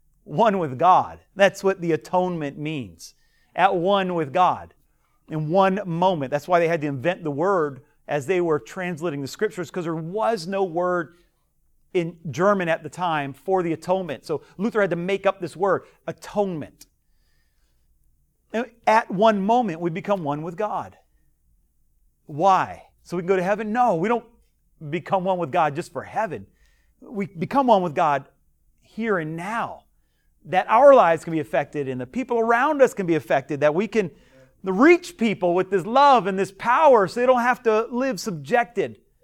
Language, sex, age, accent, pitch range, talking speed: English, male, 40-59, American, 150-205 Hz, 175 wpm